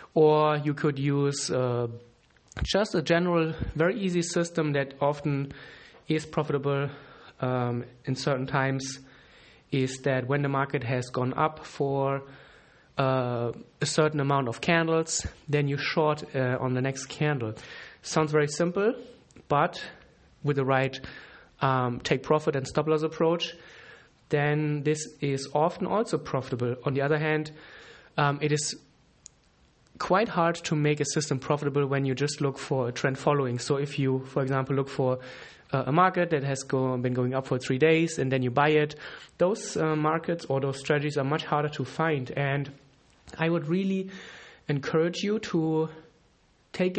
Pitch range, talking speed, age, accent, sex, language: 135-160 Hz, 160 wpm, 30-49, German, male, English